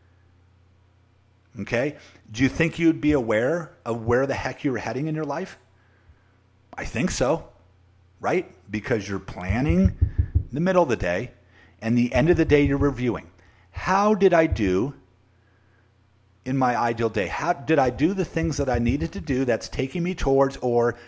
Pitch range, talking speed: 95-155 Hz, 170 wpm